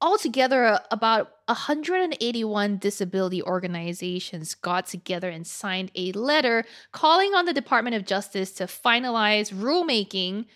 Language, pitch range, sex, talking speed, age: English, 180-235 Hz, female, 115 wpm, 20-39